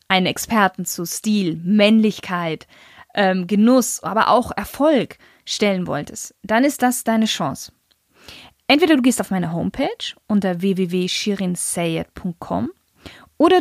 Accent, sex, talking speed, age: German, female, 115 wpm, 20-39